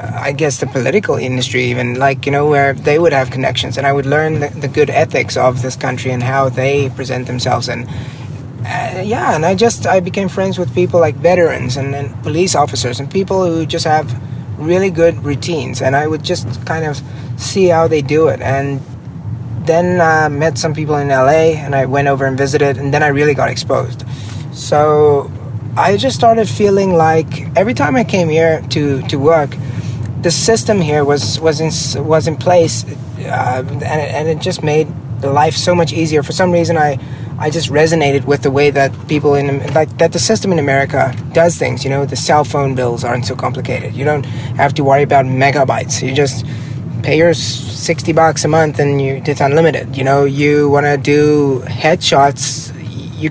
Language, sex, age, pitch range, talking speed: English, male, 30-49, 130-155 Hz, 200 wpm